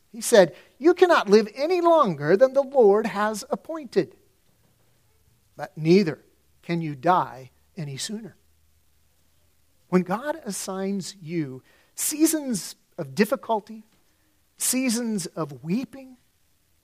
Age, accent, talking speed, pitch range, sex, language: 50-69, American, 105 wpm, 160-225 Hz, male, English